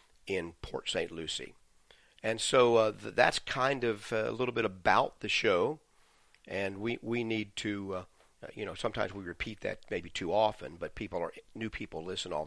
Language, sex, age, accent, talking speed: English, male, 40-59, American, 190 wpm